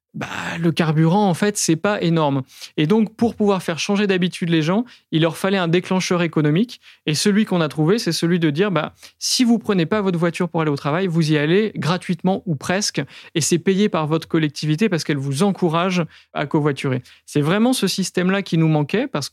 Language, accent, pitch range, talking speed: French, French, 155-195 Hz, 215 wpm